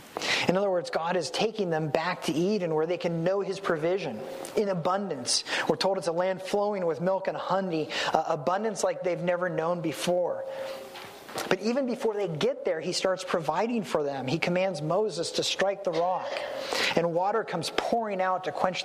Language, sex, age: English, male, 30-49